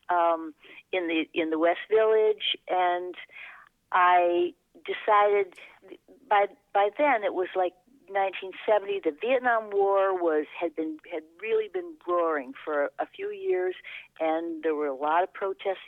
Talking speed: 150 wpm